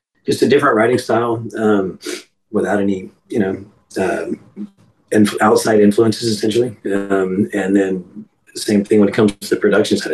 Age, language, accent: 30-49, English, American